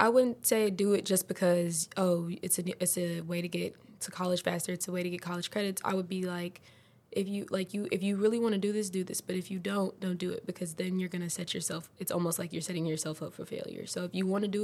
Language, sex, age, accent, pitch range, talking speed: English, female, 20-39, American, 175-200 Hz, 290 wpm